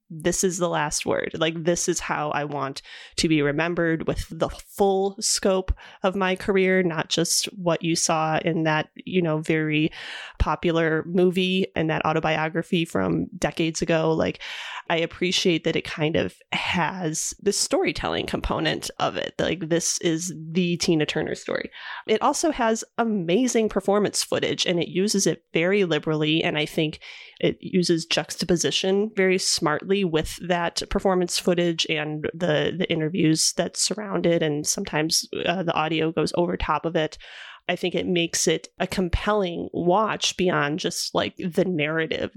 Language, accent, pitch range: English, American, 165-195 Hz